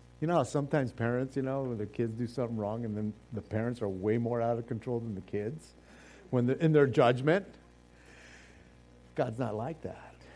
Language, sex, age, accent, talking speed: English, male, 50-69, American, 195 wpm